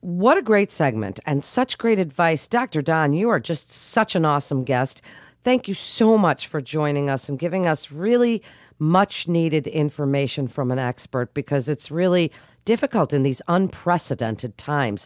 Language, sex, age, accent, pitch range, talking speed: English, female, 50-69, American, 135-185 Hz, 165 wpm